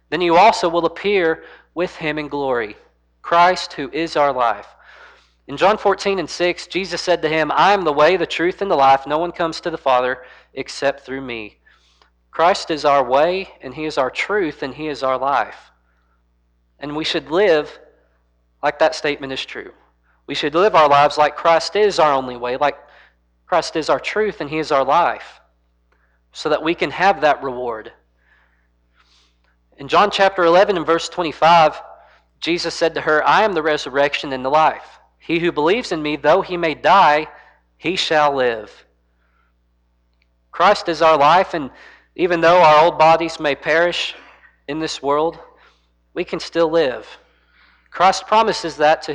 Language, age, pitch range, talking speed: English, 40-59, 105-170 Hz, 175 wpm